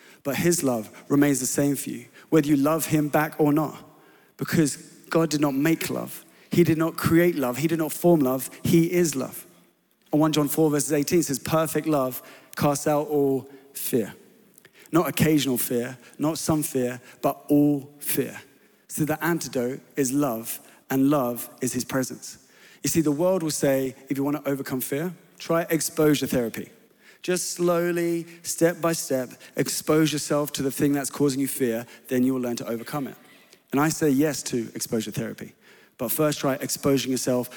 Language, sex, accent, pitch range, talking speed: English, male, British, 130-160 Hz, 180 wpm